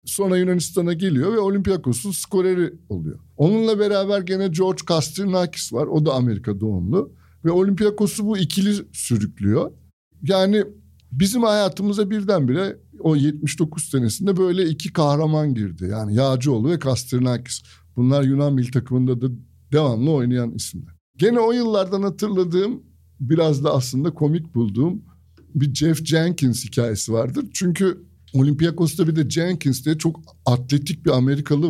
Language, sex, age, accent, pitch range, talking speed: Turkish, male, 60-79, native, 125-190 Hz, 130 wpm